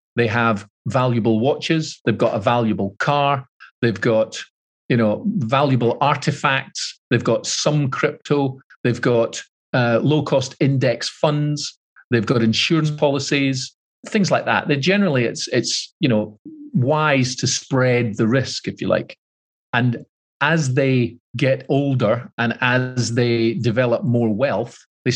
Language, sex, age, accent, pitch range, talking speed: Swedish, male, 40-59, British, 115-145 Hz, 140 wpm